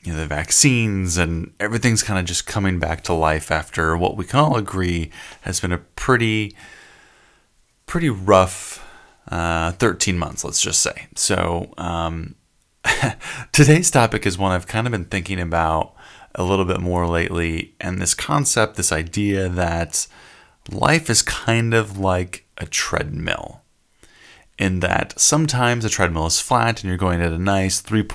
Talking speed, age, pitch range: 160 wpm, 30-49, 90-115 Hz